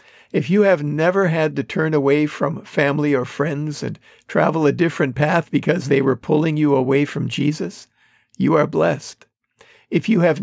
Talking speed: 180 wpm